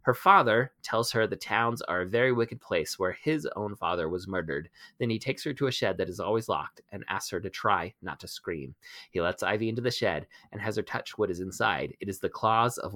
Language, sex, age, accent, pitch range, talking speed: English, male, 30-49, American, 95-120 Hz, 250 wpm